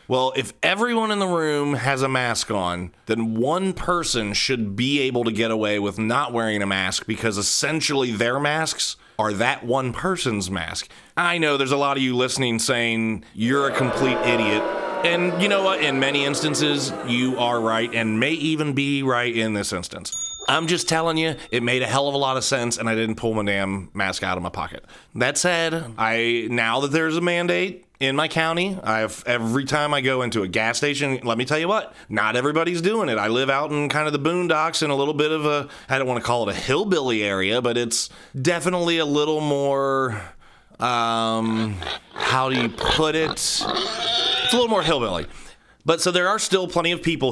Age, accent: 30-49, American